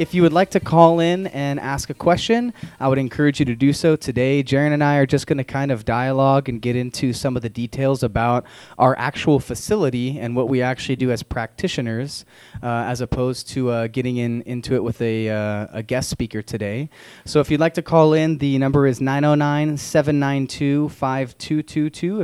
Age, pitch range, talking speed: 20-39, 125-155 Hz, 195 wpm